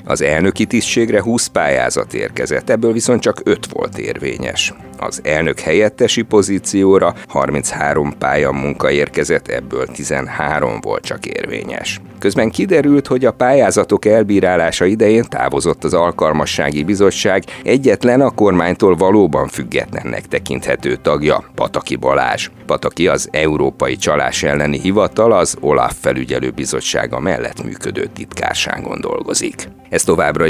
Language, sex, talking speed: Hungarian, male, 120 wpm